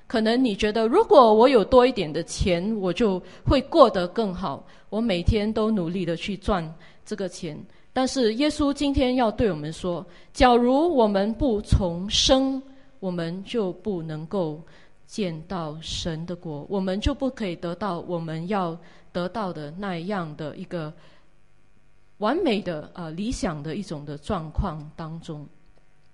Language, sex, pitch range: English, female, 175-250 Hz